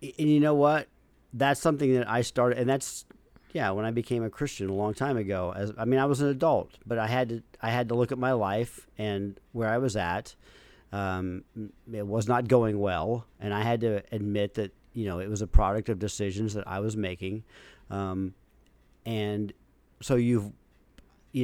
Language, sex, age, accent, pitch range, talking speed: English, male, 40-59, American, 105-135 Hz, 205 wpm